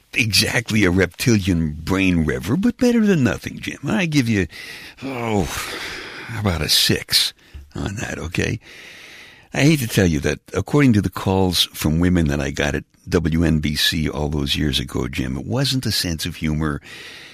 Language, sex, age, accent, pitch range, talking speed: English, male, 60-79, American, 80-120 Hz, 165 wpm